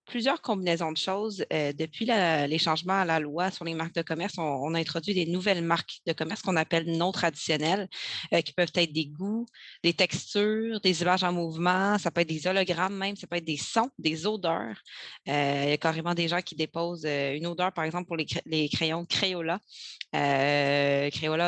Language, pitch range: French, 155-180 Hz